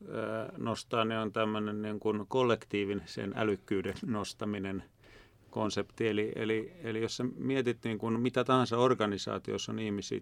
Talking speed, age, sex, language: 125 wpm, 40-59, male, Finnish